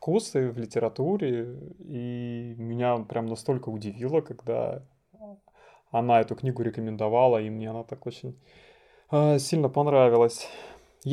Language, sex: Russian, male